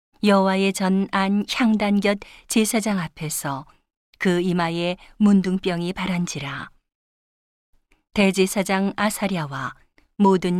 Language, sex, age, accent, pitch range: Korean, female, 40-59, native, 175-205 Hz